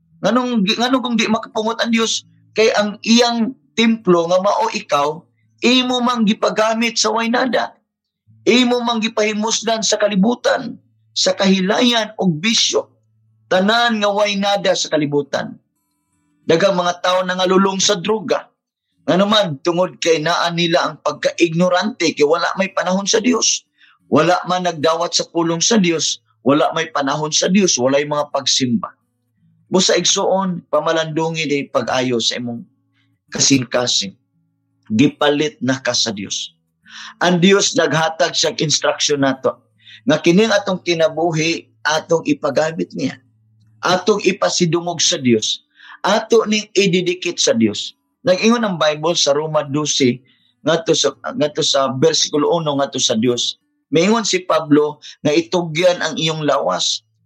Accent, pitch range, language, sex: native, 145-205 Hz, Filipino, male